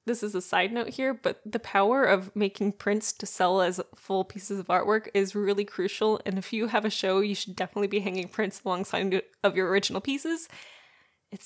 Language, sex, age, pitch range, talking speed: English, female, 10-29, 195-235 Hz, 210 wpm